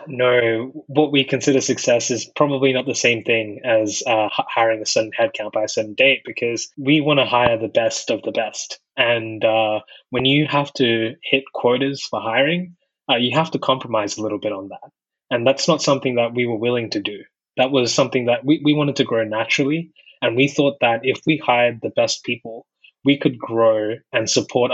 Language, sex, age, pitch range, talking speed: English, male, 20-39, 115-140 Hz, 210 wpm